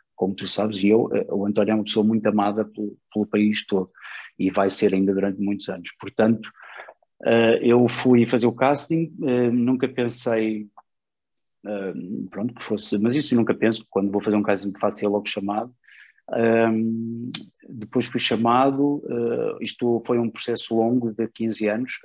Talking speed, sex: 155 wpm, male